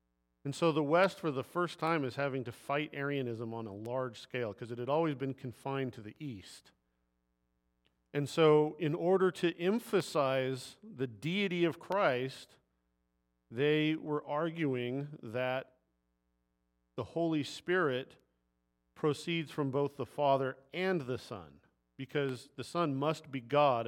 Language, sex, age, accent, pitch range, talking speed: English, male, 40-59, American, 95-150 Hz, 145 wpm